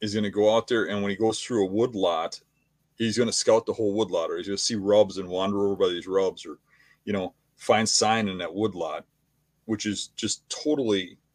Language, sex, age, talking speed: English, male, 40-59, 235 wpm